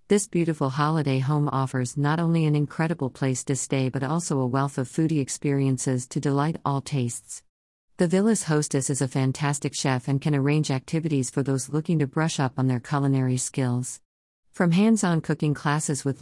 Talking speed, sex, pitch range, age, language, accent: 180 wpm, female, 130-160 Hz, 50-69, English, American